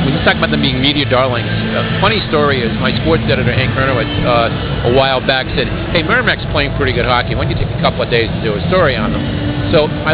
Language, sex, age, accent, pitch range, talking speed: English, male, 50-69, American, 110-150 Hz, 265 wpm